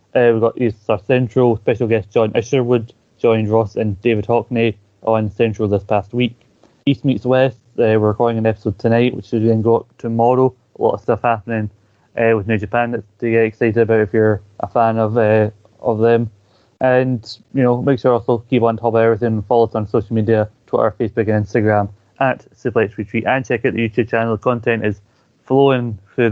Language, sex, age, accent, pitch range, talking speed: English, male, 20-39, British, 110-120 Hz, 210 wpm